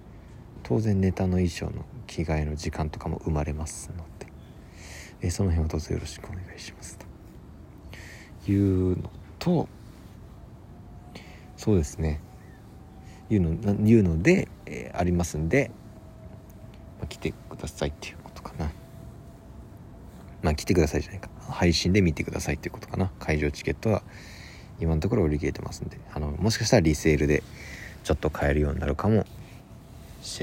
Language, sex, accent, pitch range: Japanese, male, native, 80-100 Hz